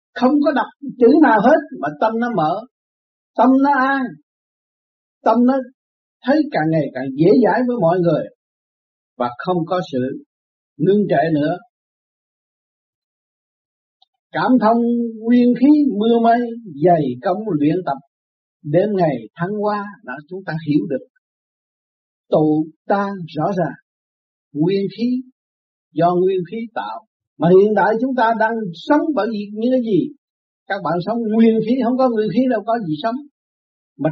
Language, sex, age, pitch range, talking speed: Vietnamese, male, 50-69, 160-235 Hz, 150 wpm